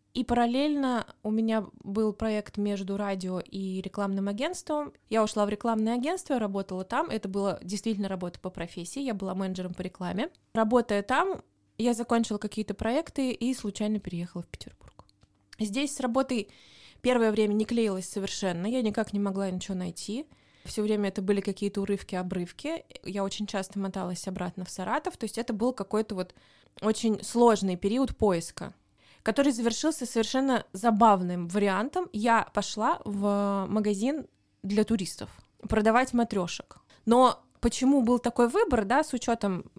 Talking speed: 150 wpm